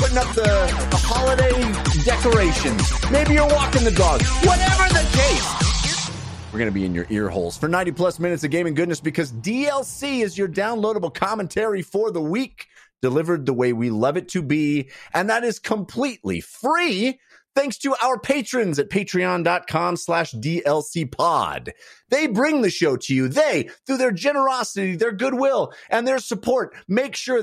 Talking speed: 165 wpm